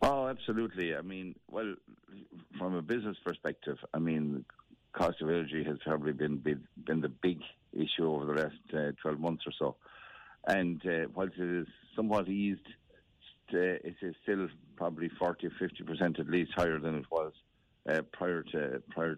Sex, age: male, 60-79